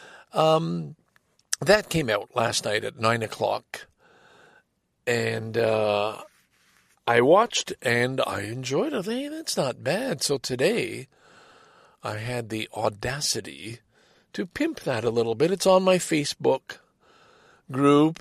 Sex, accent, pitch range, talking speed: male, American, 115-175 Hz, 130 wpm